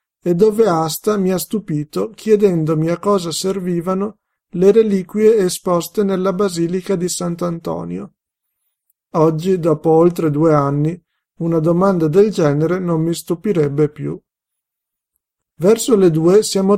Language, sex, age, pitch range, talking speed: Italian, male, 50-69, 160-200 Hz, 120 wpm